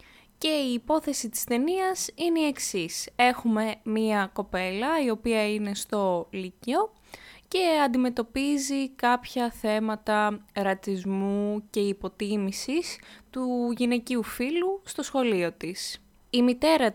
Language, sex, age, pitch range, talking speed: Greek, female, 20-39, 205-255 Hz, 110 wpm